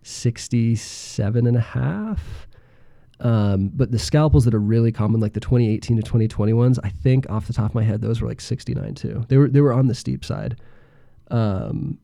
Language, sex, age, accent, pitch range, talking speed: English, male, 20-39, American, 110-140 Hz, 200 wpm